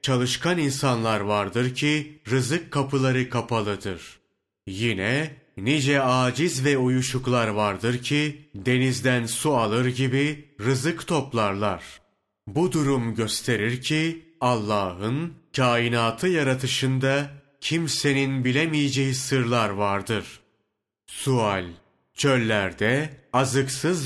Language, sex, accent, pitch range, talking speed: Turkish, male, native, 115-140 Hz, 85 wpm